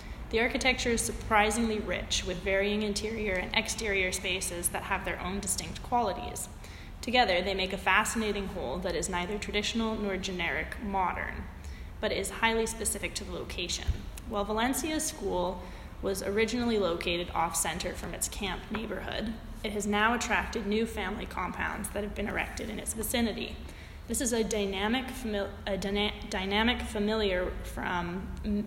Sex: female